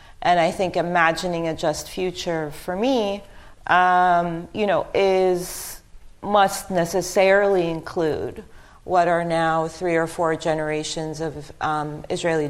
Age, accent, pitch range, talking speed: 40-59, American, 150-180 Hz, 125 wpm